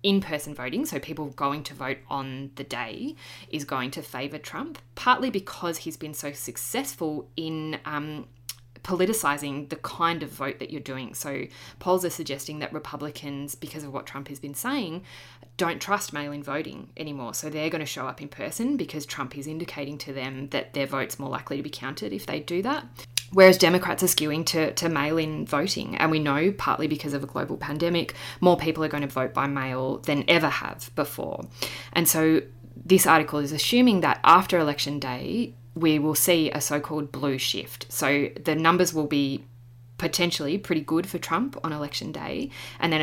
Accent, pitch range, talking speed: Australian, 135-165 Hz, 190 wpm